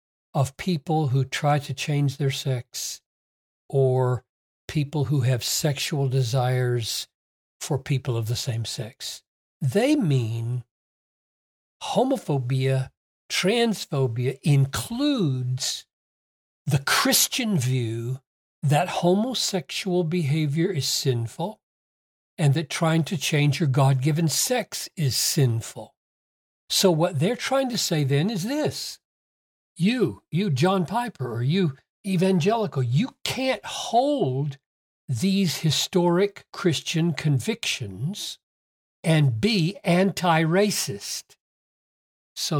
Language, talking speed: English, 100 wpm